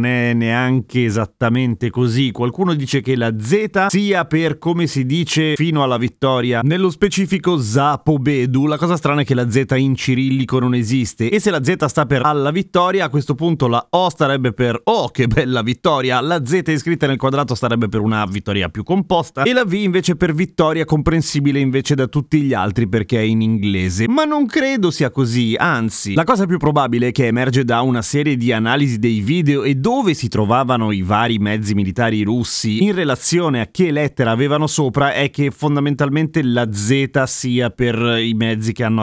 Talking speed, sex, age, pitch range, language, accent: 190 wpm, male, 30-49, 120-155 Hz, Italian, native